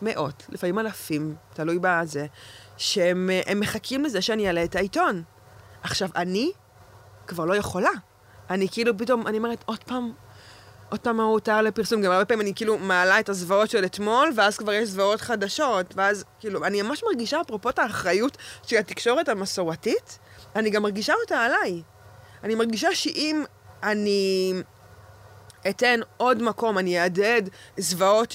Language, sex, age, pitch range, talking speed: Hebrew, female, 20-39, 185-240 Hz, 145 wpm